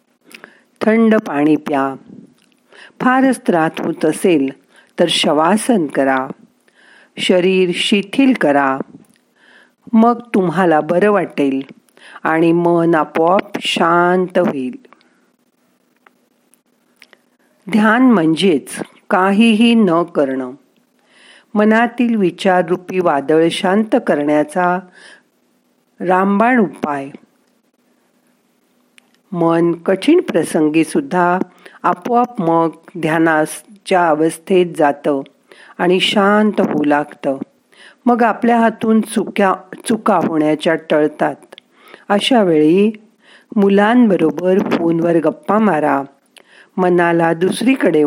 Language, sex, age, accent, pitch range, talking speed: Marathi, female, 50-69, native, 160-225 Hz, 75 wpm